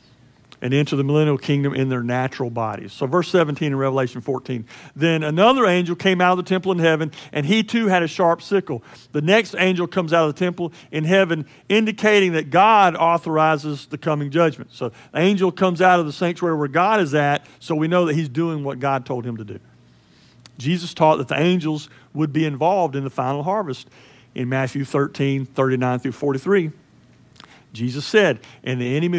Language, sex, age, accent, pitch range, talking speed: English, male, 50-69, American, 140-190 Hz, 195 wpm